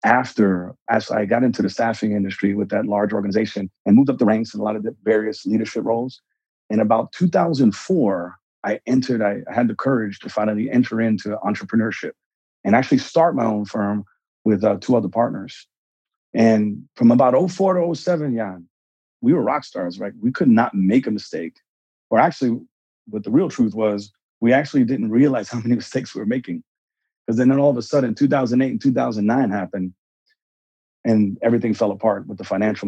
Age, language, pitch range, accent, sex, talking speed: 40-59, English, 100-120 Hz, American, male, 185 wpm